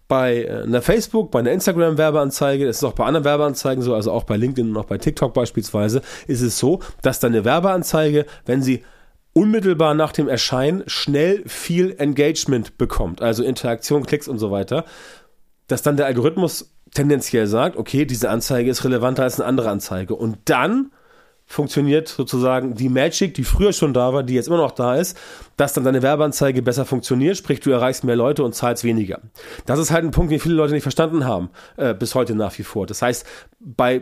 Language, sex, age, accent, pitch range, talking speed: German, male, 30-49, German, 125-165 Hz, 195 wpm